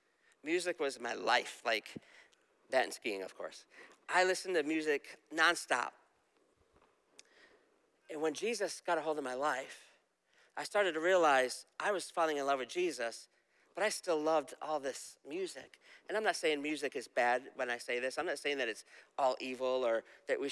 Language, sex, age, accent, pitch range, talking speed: English, male, 40-59, American, 140-180 Hz, 185 wpm